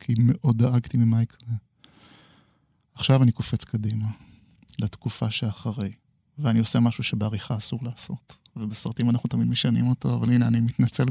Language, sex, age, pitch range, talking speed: Hebrew, male, 20-39, 115-130 Hz, 140 wpm